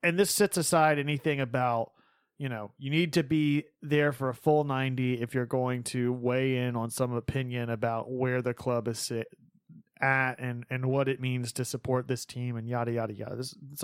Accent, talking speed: American, 200 wpm